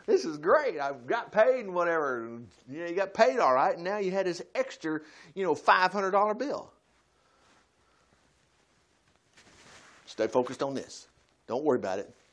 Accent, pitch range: American, 175-270 Hz